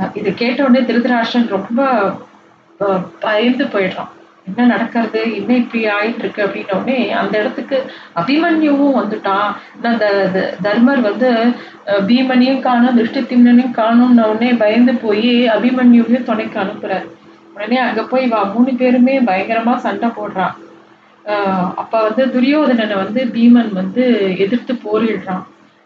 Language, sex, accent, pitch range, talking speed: Tamil, female, native, 200-250 Hz, 110 wpm